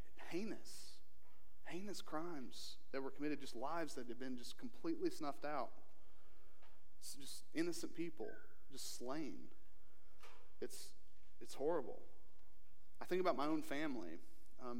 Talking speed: 120 wpm